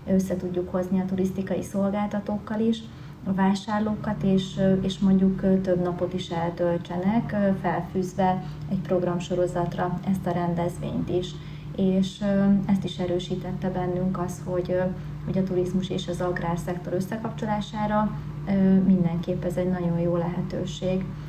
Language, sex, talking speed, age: Hungarian, female, 120 wpm, 30-49